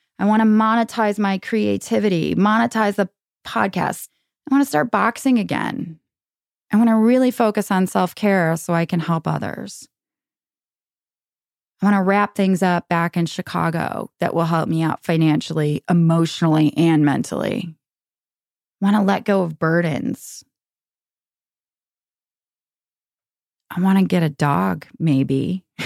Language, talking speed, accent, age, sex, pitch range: English, 135 wpm, American, 20-39, female, 155-205 Hz